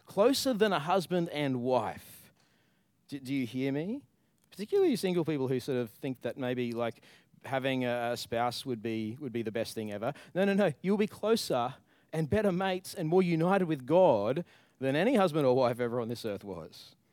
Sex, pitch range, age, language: male, 115-180 Hz, 30-49, English